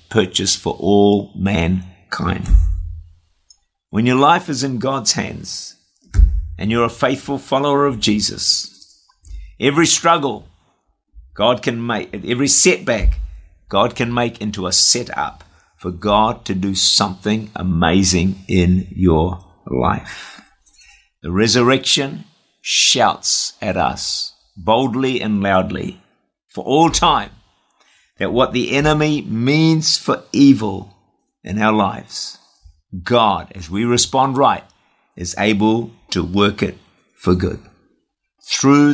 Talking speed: 115 wpm